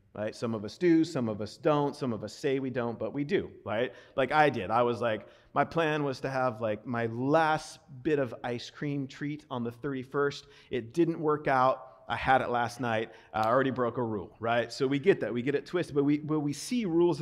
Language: English